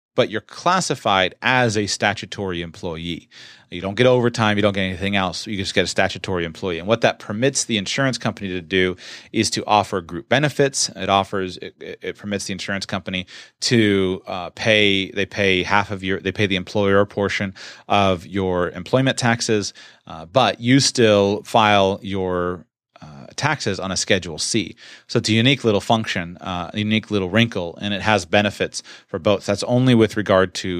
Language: English